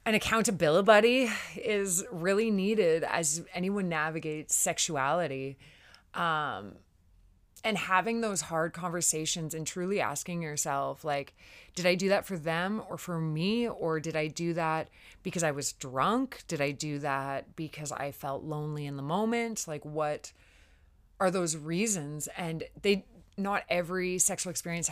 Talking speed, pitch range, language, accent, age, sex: 145 wpm, 145-195 Hz, English, American, 20-39, female